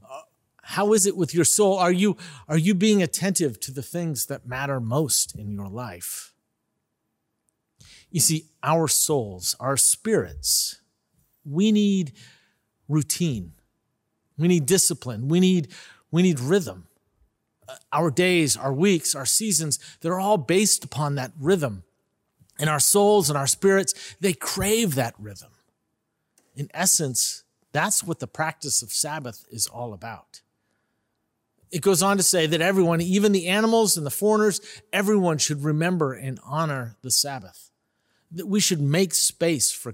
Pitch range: 135-190 Hz